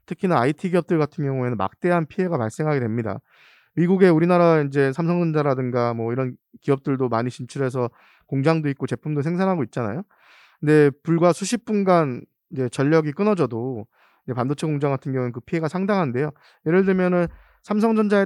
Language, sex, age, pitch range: Korean, male, 20-39, 135-175 Hz